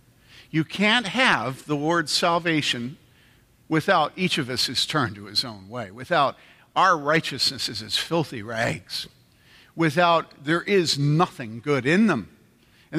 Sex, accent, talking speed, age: male, American, 145 wpm, 50-69